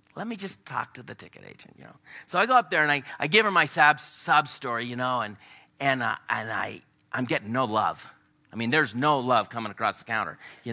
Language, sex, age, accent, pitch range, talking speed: English, male, 40-59, American, 150-220 Hz, 245 wpm